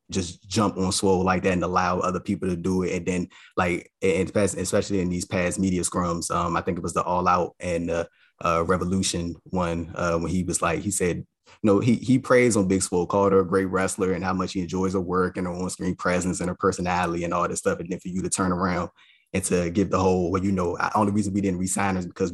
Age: 20-39